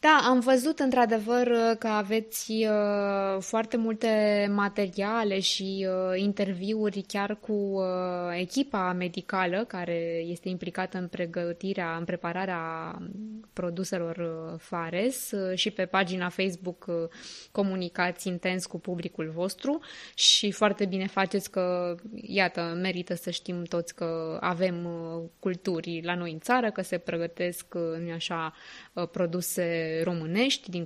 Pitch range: 175-225 Hz